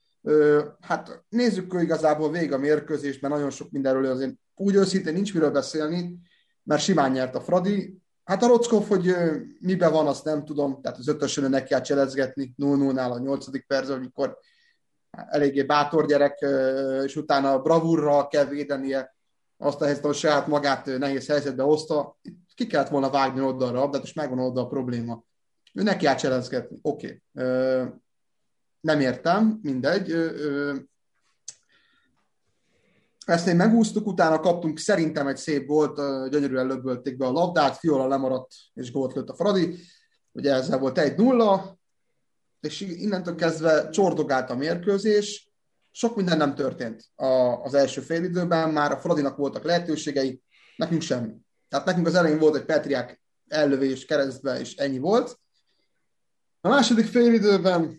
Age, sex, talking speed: 30-49, male, 140 wpm